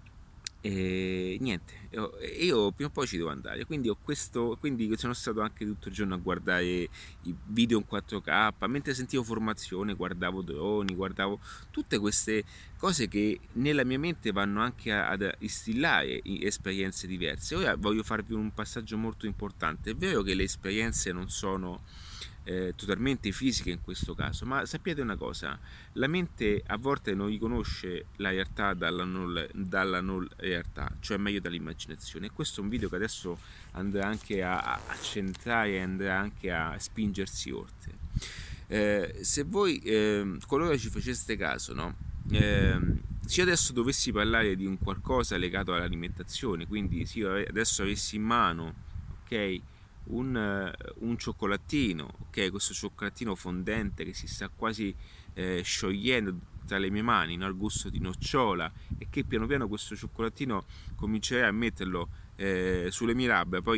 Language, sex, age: Italian, male, 30-49